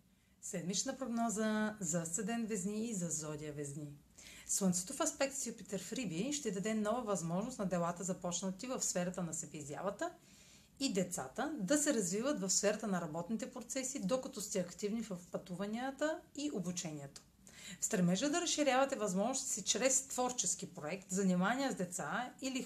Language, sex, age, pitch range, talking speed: Bulgarian, female, 30-49, 180-250 Hz, 145 wpm